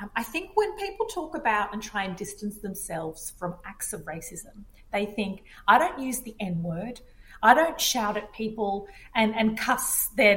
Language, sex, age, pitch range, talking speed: English, female, 30-49, 190-240 Hz, 180 wpm